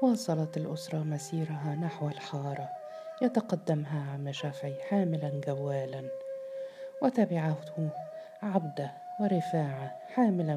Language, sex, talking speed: Arabic, female, 80 wpm